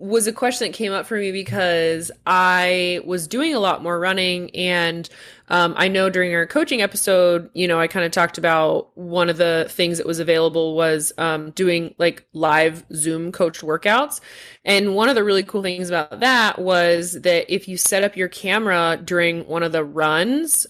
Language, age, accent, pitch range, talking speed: English, 20-39, American, 170-210 Hz, 195 wpm